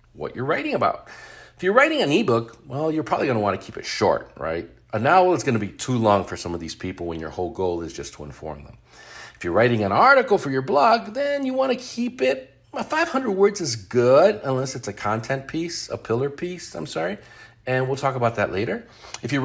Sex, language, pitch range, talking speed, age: male, English, 115-180 Hz, 230 wpm, 40-59